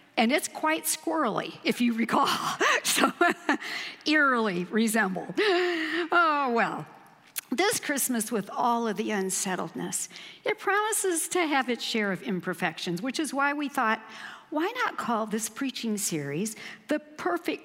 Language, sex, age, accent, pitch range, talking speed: English, female, 60-79, American, 225-315 Hz, 135 wpm